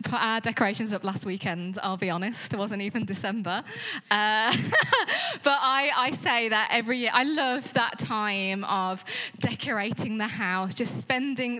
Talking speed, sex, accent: 160 wpm, female, British